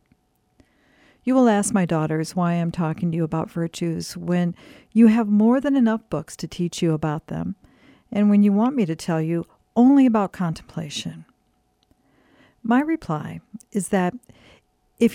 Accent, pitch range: American, 170-225 Hz